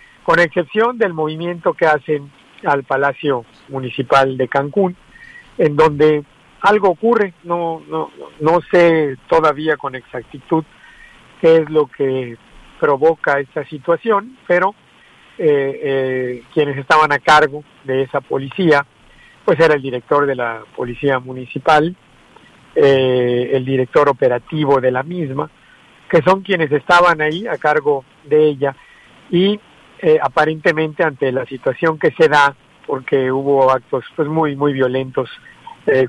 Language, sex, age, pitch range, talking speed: Spanish, male, 50-69, 135-165 Hz, 135 wpm